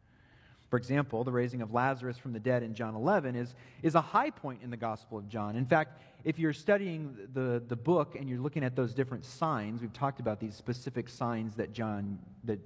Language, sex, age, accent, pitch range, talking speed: English, male, 40-59, American, 110-145 Hz, 220 wpm